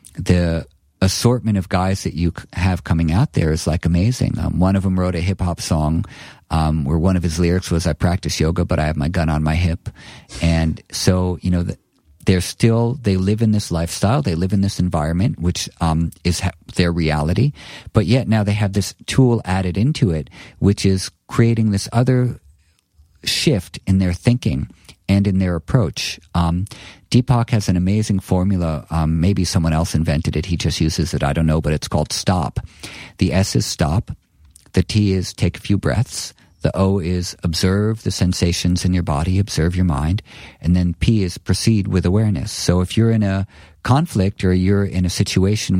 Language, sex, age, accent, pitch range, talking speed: English, male, 50-69, American, 85-105 Hz, 195 wpm